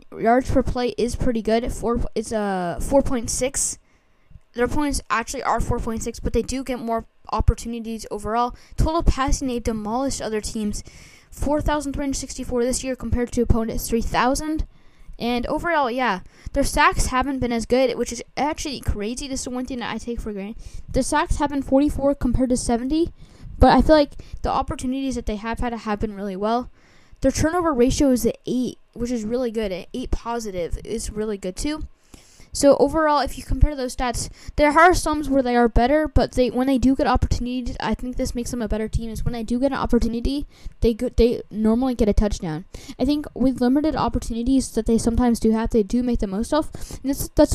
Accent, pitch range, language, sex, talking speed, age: American, 225-270 Hz, English, female, 200 wpm, 10-29